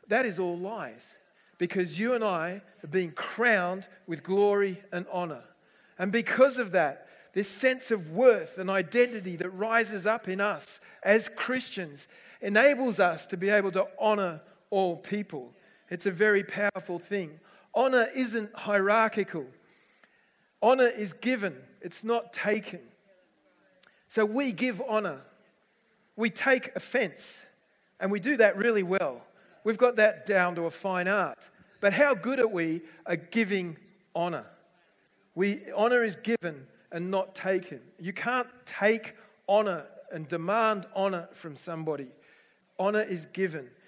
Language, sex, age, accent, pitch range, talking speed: English, male, 40-59, Australian, 175-220 Hz, 140 wpm